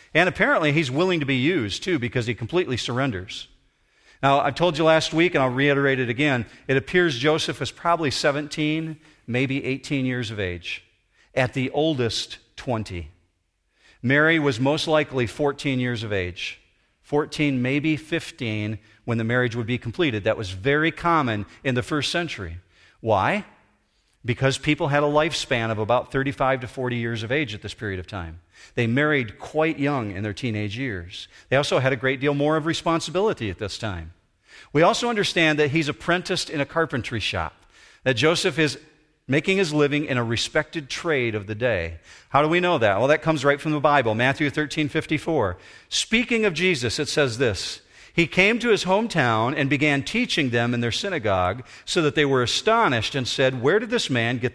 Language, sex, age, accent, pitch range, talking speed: English, male, 40-59, American, 120-155 Hz, 190 wpm